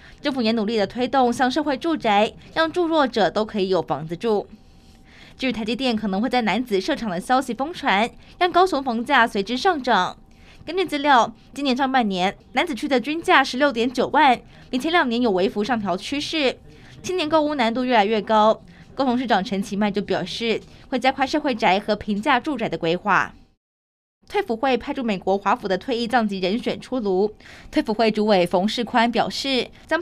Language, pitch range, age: Chinese, 215-285 Hz, 20-39